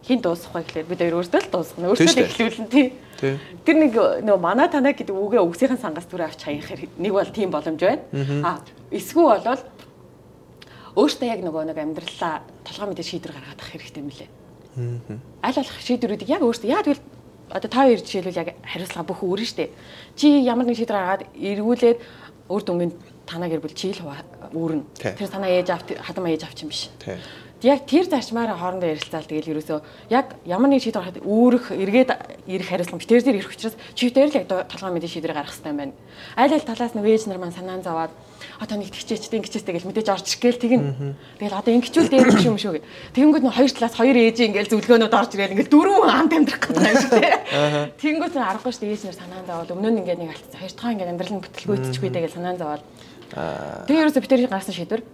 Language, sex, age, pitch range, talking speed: English, female, 30-49, 170-240 Hz, 95 wpm